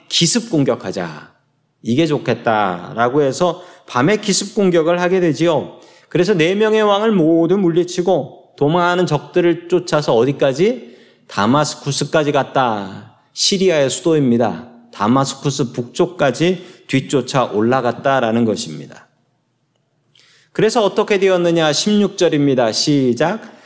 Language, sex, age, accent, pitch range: Korean, male, 40-59, native, 125-175 Hz